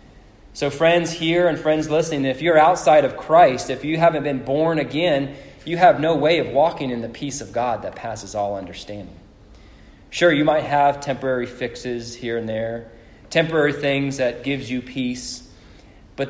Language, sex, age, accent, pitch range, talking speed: English, male, 20-39, American, 120-165 Hz, 175 wpm